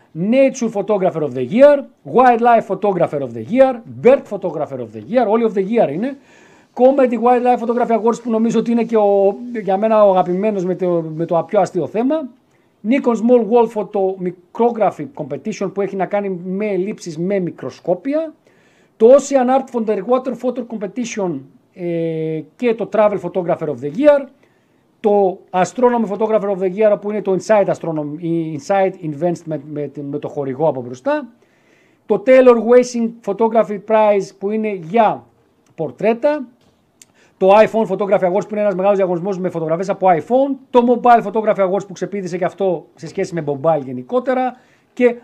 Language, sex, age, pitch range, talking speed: Greek, male, 50-69, 175-235 Hz, 165 wpm